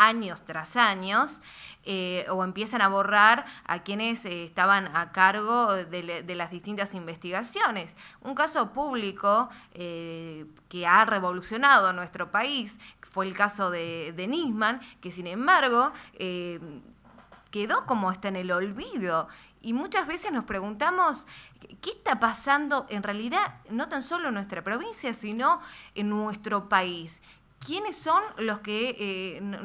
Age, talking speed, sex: 20-39, 140 wpm, female